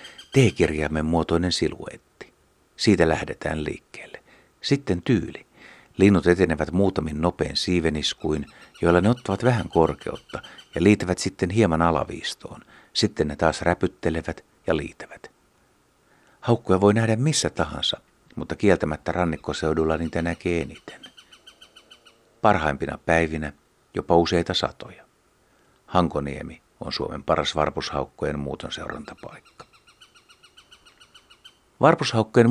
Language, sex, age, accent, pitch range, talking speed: Finnish, male, 60-79, native, 80-95 Hz, 95 wpm